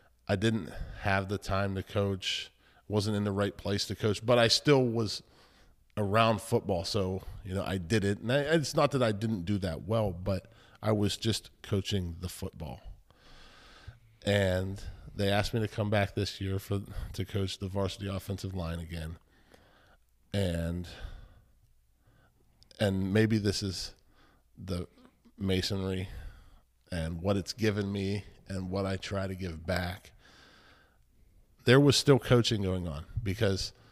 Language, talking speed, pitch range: English, 150 wpm, 90-110 Hz